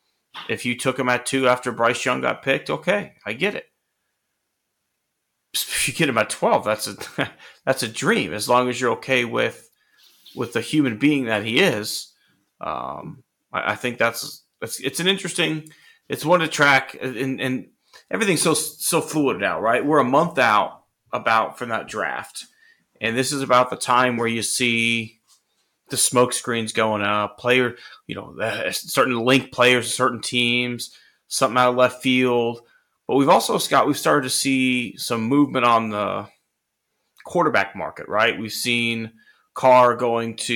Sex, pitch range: male, 115-130 Hz